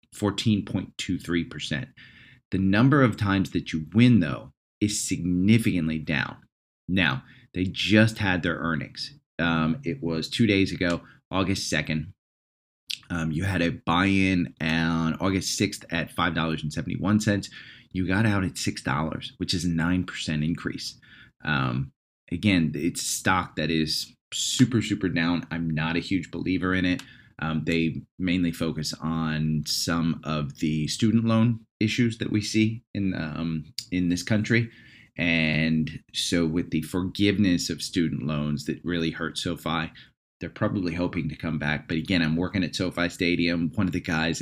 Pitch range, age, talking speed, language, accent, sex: 80-100 Hz, 30-49, 145 wpm, English, American, male